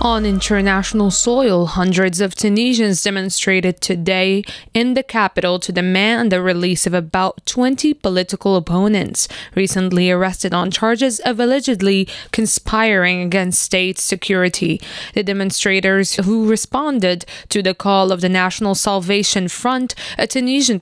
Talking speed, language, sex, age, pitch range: 125 wpm, French, female, 20-39, 185-220 Hz